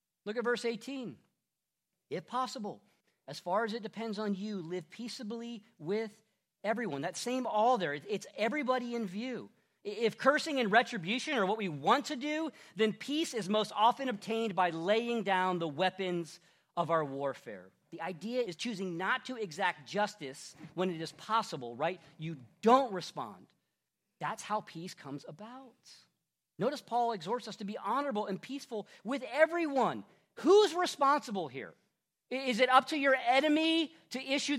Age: 40-59